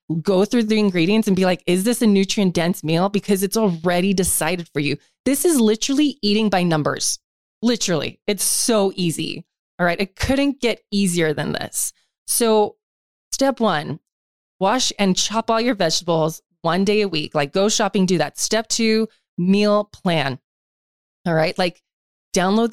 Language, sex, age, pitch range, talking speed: English, female, 20-39, 185-235 Hz, 165 wpm